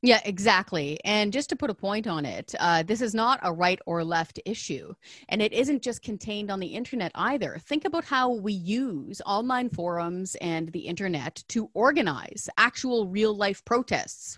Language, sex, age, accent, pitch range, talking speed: English, female, 30-49, American, 180-245 Hz, 185 wpm